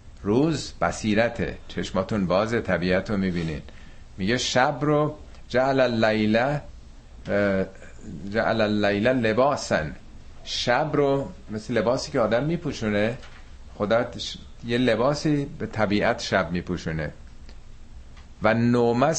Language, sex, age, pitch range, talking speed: Persian, male, 50-69, 85-130 Hz, 90 wpm